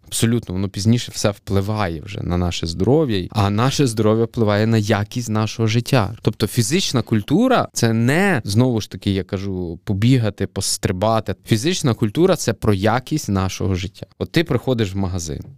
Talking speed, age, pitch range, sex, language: 165 wpm, 20-39, 95-125 Hz, male, Ukrainian